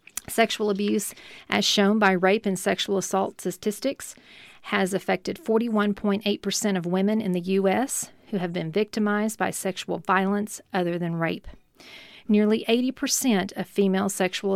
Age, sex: 40-59, female